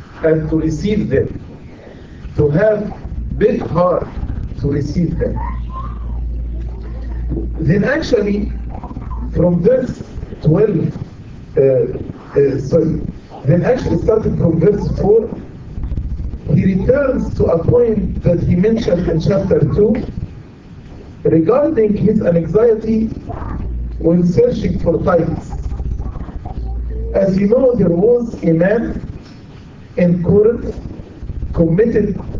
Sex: male